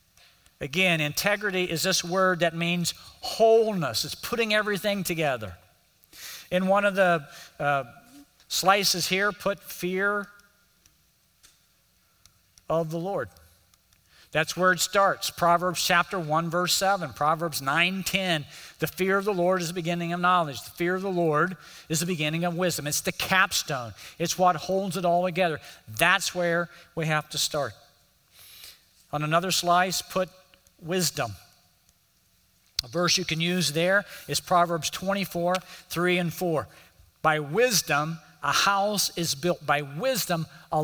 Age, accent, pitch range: 50-69, American, 150-190 Hz